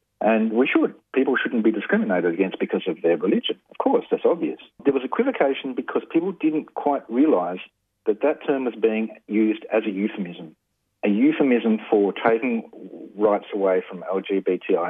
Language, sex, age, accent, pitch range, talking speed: English, male, 40-59, Australian, 95-140 Hz, 165 wpm